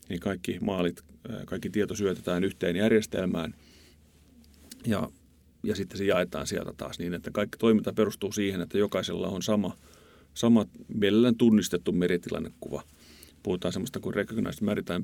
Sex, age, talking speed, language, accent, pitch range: male, 30-49, 135 wpm, Finnish, native, 90-110 Hz